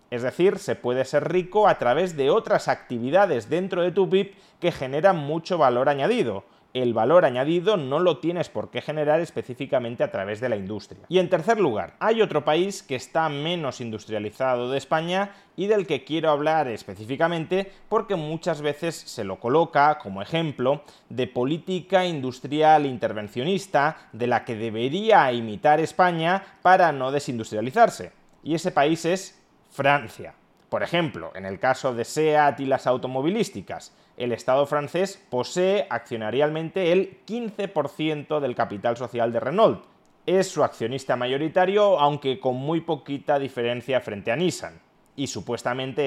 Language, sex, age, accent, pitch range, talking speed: Spanish, male, 30-49, Spanish, 125-175 Hz, 150 wpm